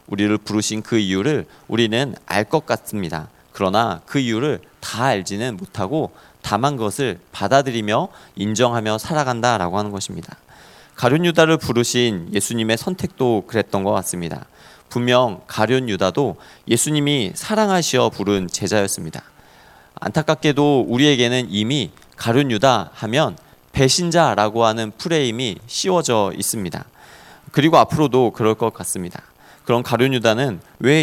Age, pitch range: 40-59, 105-135 Hz